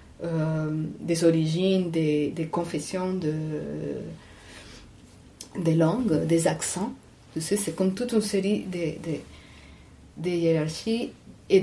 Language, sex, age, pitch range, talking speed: French, female, 30-49, 155-190 Hz, 120 wpm